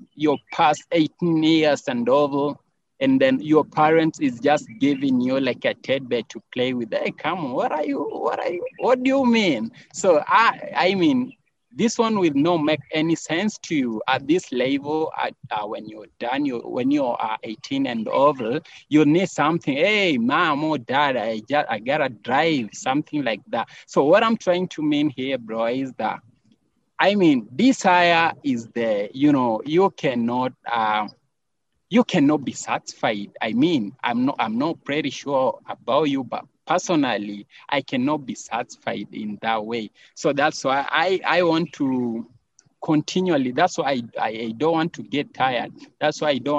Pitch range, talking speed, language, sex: 130-220 Hz, 180 wpm, English, male